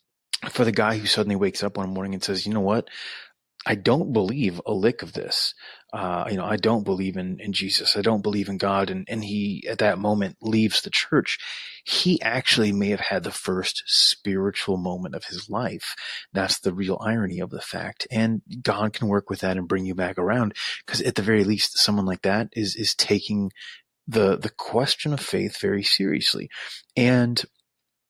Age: 30-49